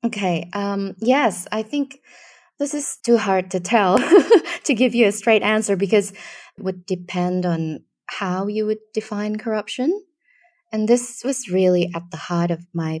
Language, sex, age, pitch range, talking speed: English, female, 20-39, 175-240 Hz, 165 wpm